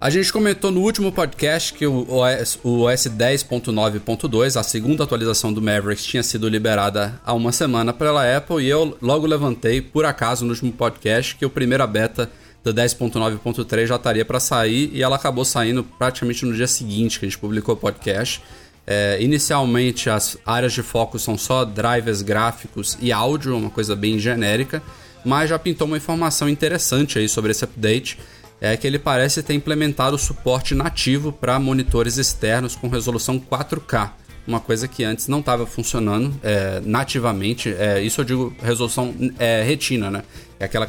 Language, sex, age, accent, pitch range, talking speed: Portuguese, male, 20-39, Brazilian, 110-135 Hz, 175 wpm